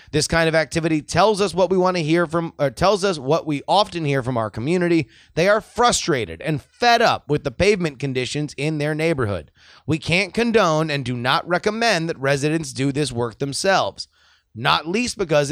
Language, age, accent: English, 30-49, American